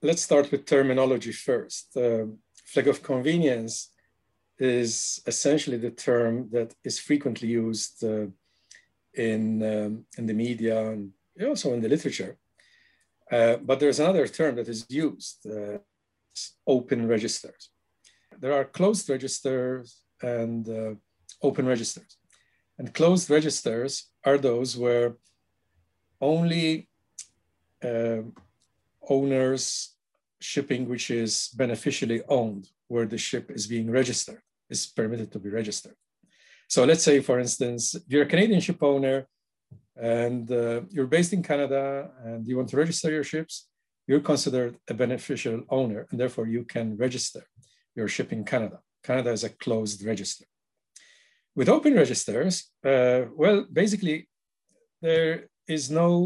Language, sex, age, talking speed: English, male, 50-69, 130 wpm